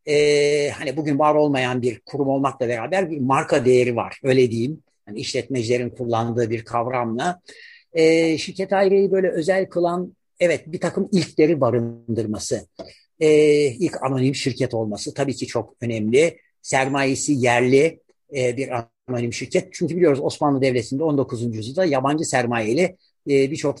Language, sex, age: Turkish, male, 60-79